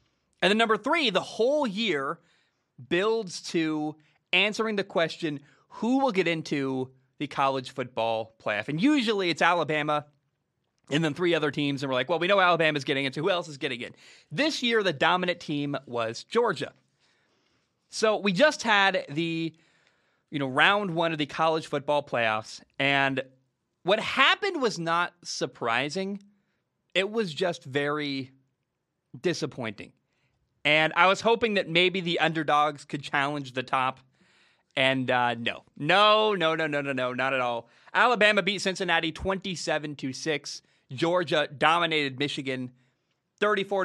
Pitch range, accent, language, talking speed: 135-185 Hz, American, English, 150 wpm